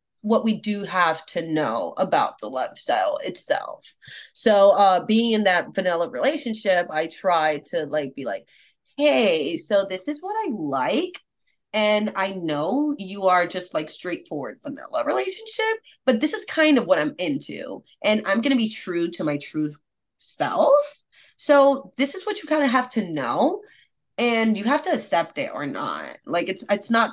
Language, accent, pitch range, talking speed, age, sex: English, American, 175-285 Hz, 175 wpm, 20-39, female